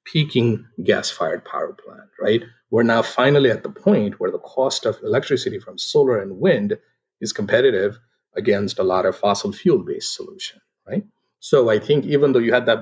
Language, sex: English, male